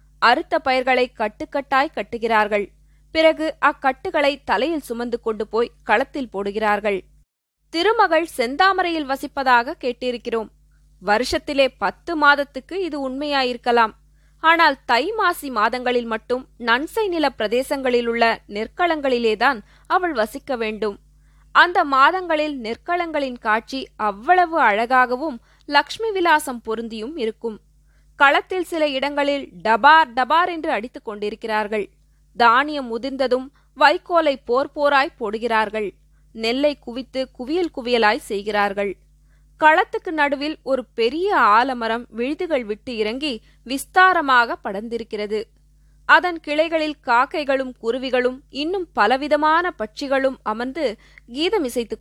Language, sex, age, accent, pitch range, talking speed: Tamil, female, 20-39, native, 225-300 Hz, 90 wpm